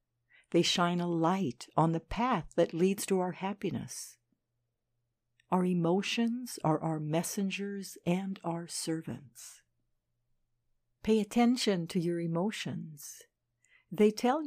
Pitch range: 125-185 Hz